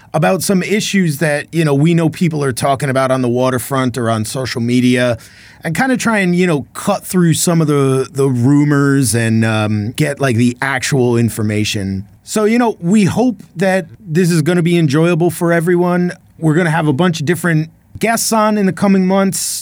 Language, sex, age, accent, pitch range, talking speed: English, male, 30-49, American, 120-170 Hz, 200 wpm